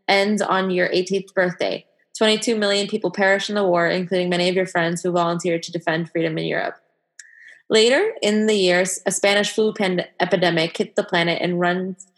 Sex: female